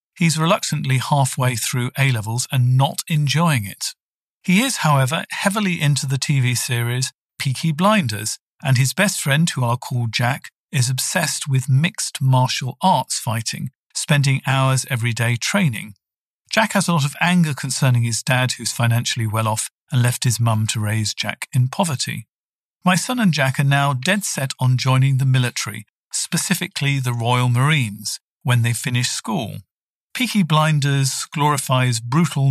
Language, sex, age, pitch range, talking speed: English, male, 50-69, 125-160 Hz, 155 wpm